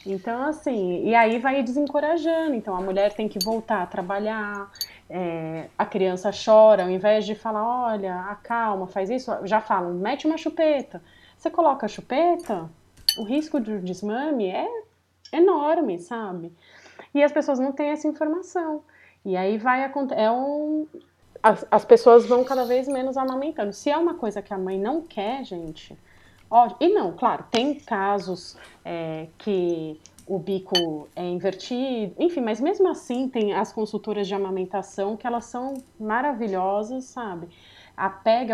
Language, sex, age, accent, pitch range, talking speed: English, female, 20-39, Brazilian, 195-265 Hz, 150 wpm